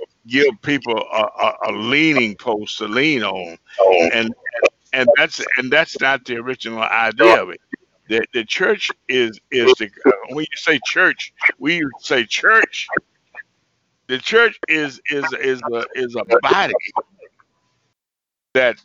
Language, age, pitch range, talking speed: English, 60-79, 125-175 Hz, 140 wpm